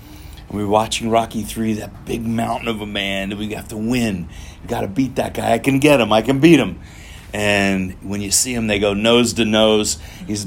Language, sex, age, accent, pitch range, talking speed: English, male, 40-59, American, 90-115 Hz, 235 wpm